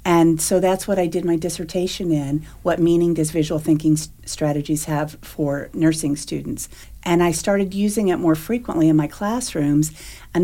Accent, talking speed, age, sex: American, 170 wpm, 50-69, female